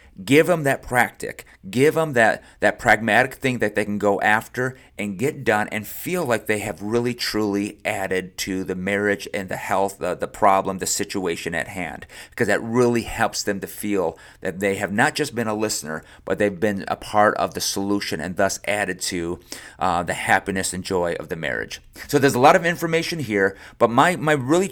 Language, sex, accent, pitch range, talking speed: English, male, American, 100-140 Hz, 205 wpm